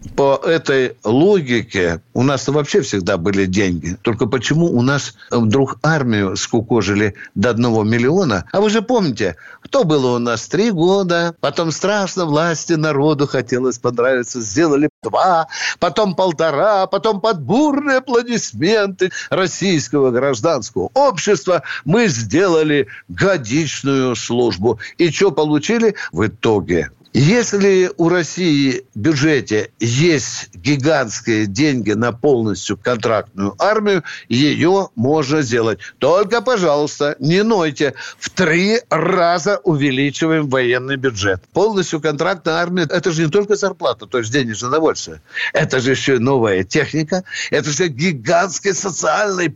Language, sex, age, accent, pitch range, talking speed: Russian, male, 60-79, native, 130-190 Hz, 125 wpm